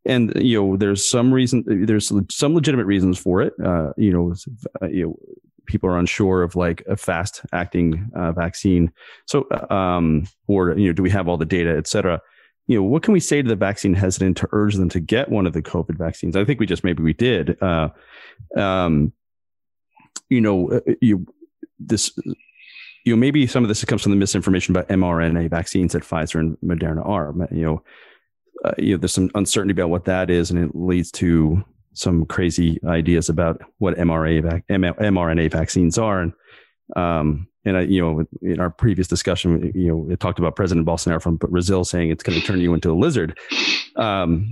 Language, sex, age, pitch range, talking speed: English, male, 30-49, 85-110 Hz, 195 wpm